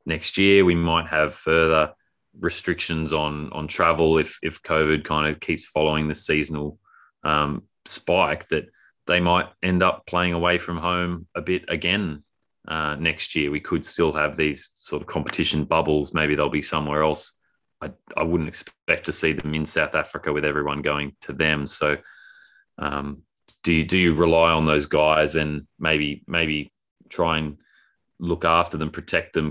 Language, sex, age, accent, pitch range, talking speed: English, male, 20-39, Australian, 75-80 Hz, 175 wpm